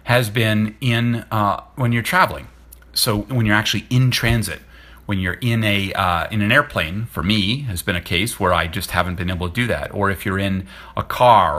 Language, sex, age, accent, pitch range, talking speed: English, male, 40-59, American, 100-125 Hz, 220 wpm